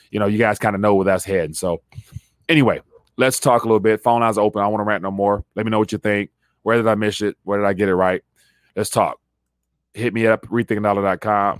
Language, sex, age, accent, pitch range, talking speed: English, male, 30-49, American, 100-125 Hz, 255 wpm